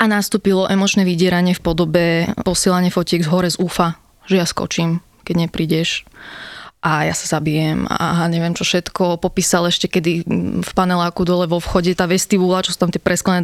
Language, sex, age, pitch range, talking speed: Slovak, female, 20-39, 175-205 Hz, 180 wpm